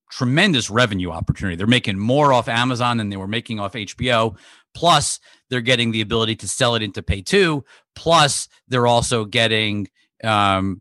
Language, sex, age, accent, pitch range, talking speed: English, male, 40-59, American, 110-135 Hz, 160 wpm